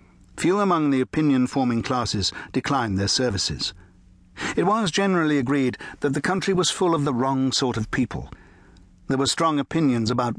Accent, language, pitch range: British, English, 105-135 Hz